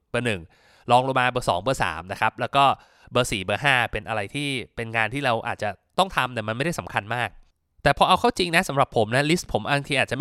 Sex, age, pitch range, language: male, 20-39, 115-150 Hz, Thai